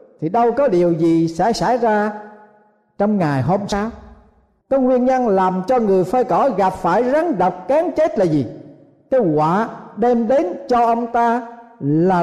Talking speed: 175 wpm